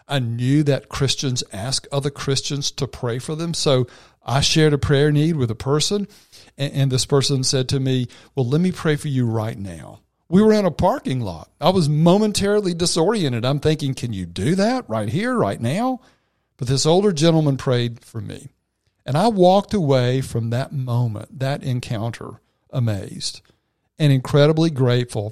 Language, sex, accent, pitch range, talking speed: English, male, American, 115-150 Hz, 175 wpm